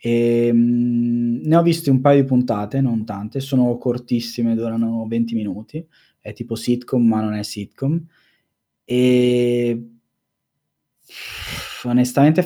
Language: Italian